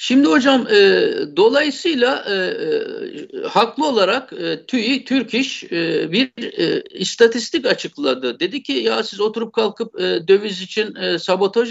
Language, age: Turkish, 50-69